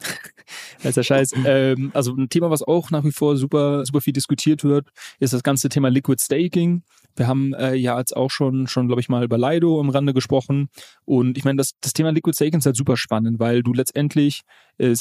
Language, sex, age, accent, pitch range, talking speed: German, male, 30-49, German, 120-145 Hz, 215 wpm